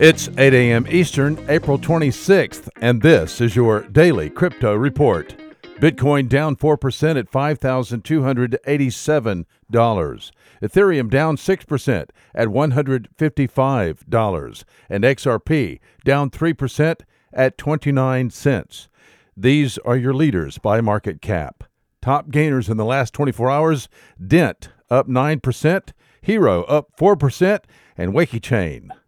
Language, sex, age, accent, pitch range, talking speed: English, male, 50-69, American, 125-160 Hz, 105 wpm